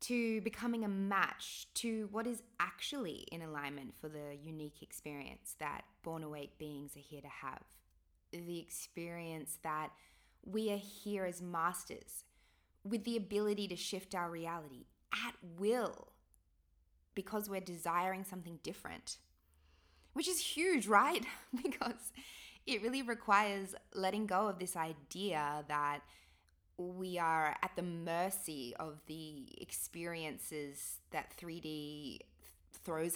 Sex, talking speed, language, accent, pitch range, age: female, 125 wpm, English, Australian, 145-195 Hz, 20-39